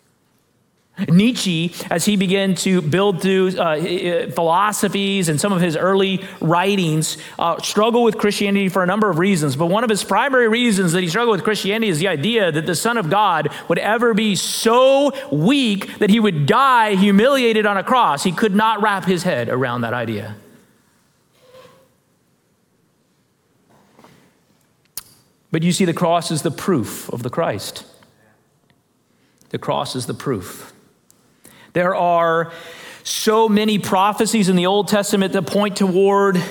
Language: English